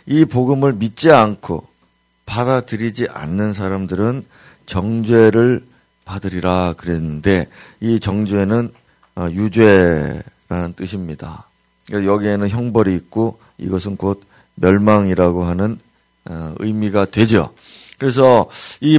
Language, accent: Korean, native